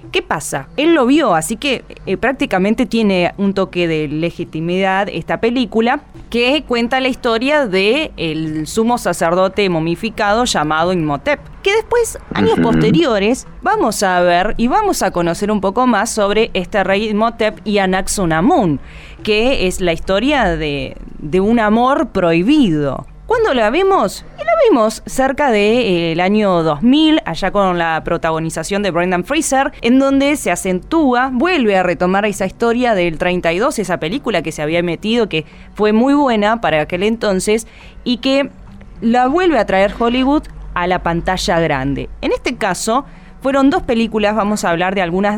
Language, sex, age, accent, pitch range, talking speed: Spanish, female, 20-39, Argentinian, 175-255 Hz, 160 wpm